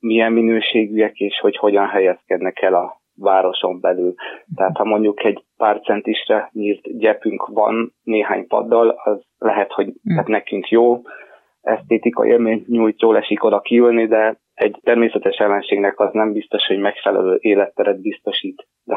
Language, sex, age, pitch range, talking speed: Hungarian, male, 30-49, 100-115 Hz, 145 wpm